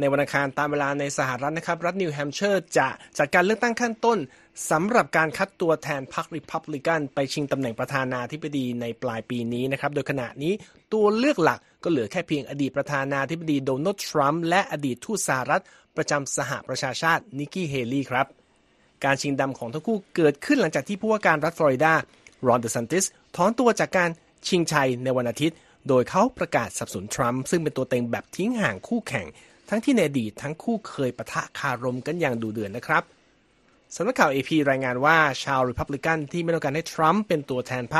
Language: Thai